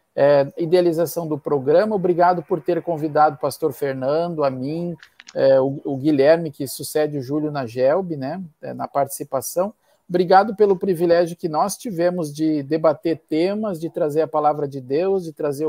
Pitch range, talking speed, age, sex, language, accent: 150-185 Hz, 170 wpm, 50-69, male, Portuguese, Brazilian